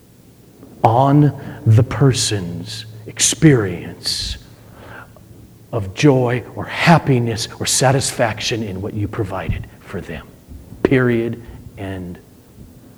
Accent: American